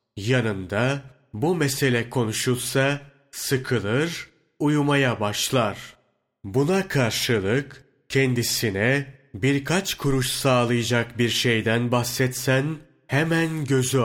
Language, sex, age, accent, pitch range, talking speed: Turkish, male, 40-59, native, 115-140 Hz, 75 wpm